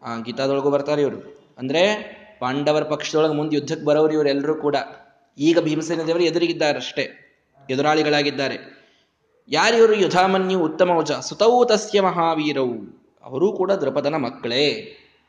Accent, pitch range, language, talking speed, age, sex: native, 135-180 Hz, Kannada, 115 wpm, 20-39, male